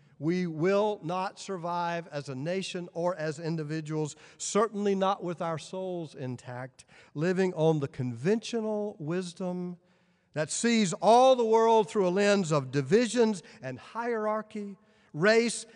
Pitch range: 145-210 Hz